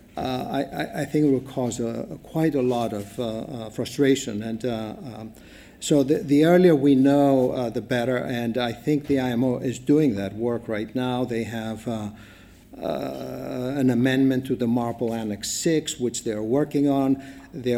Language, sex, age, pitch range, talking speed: English, male, 50-69, 115-135 Hz, 180 wpm